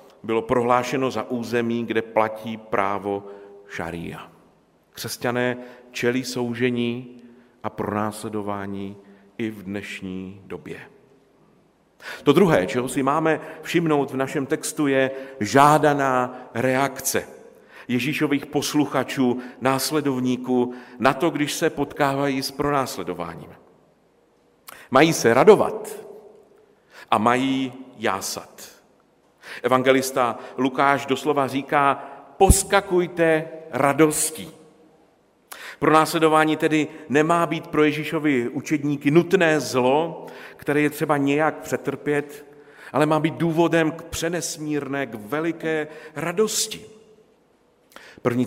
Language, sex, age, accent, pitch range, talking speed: Czech, male, 50-69, native, 125-155 Hz, 95 wpm